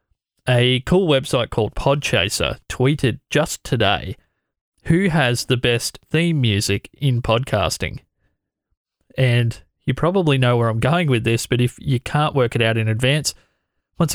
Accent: Australian